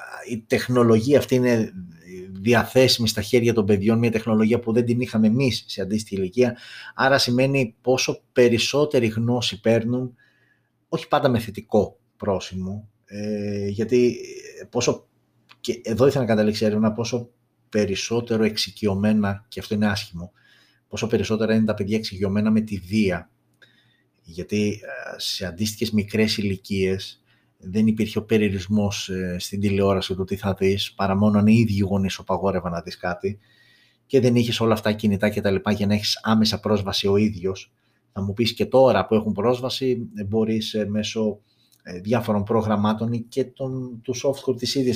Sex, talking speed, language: male, 150 wpm, Greek